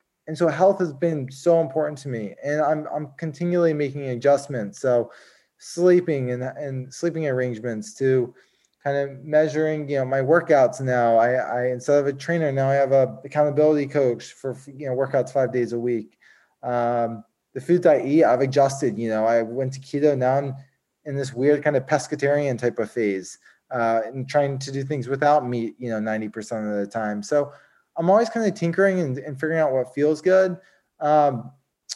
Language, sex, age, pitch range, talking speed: English, male, 20-39, 120-150 Hz, 190 wpm